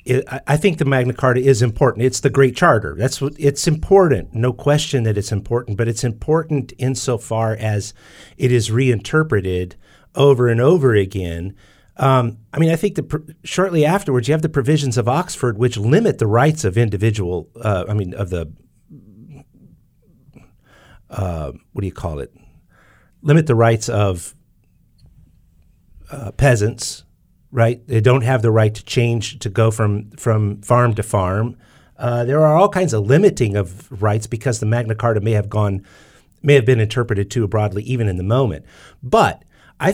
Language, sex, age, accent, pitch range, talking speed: English, male, 50-69, American, 105-135 Hz, 170 wpm